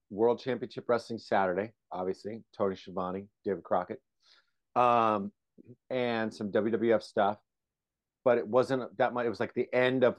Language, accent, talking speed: English, American, 145 wpm